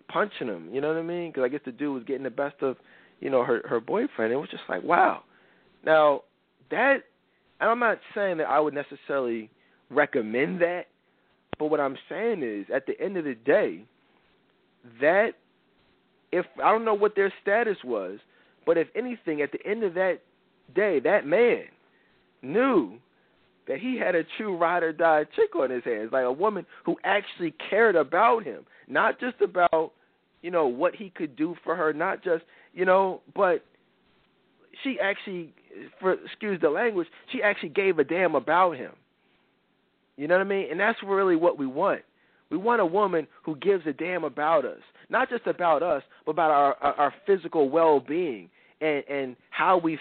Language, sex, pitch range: English, male, 150-215 Hz